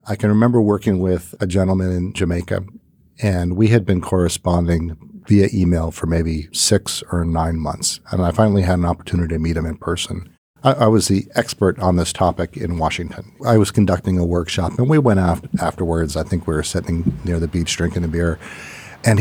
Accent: American